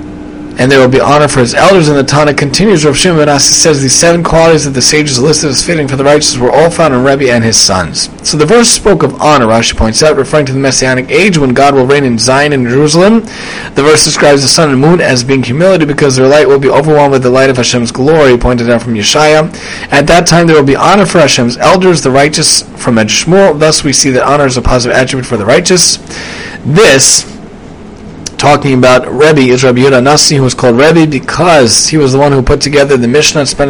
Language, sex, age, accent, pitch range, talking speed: English, male, 30-49, American, 125-155 Hz, 235 wpm